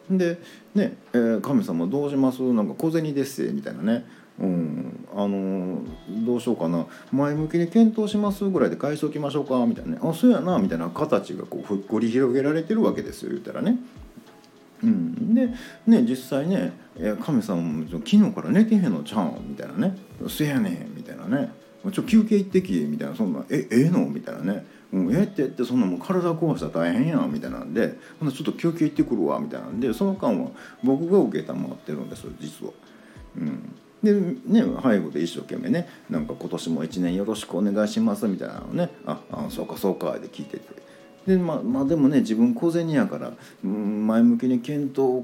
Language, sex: Japanese, male